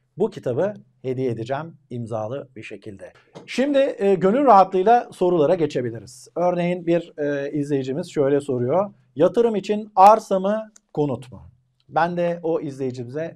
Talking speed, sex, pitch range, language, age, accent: 120 wpm, male, 120-170 Hz, Turkish, 50-69, native